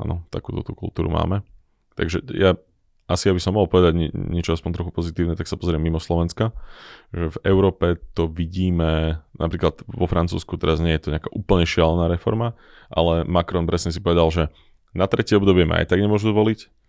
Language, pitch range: Slovak, 80-90 Hz